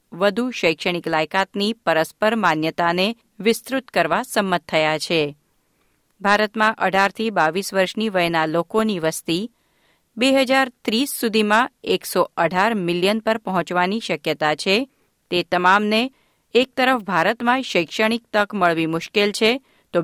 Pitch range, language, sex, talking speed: 170-230 Hz, Gujarati, female, 110 wpm